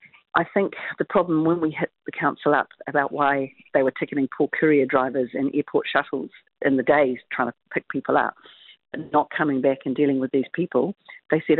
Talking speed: 205 wpm